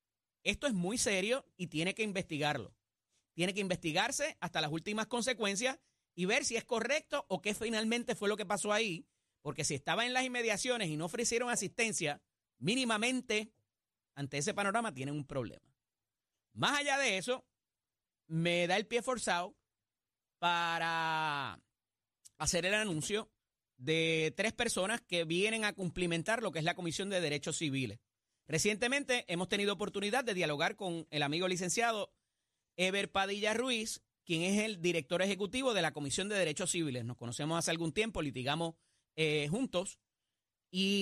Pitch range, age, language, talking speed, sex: 155-220 Hz, 30-49, Spanish, 155 wpm, male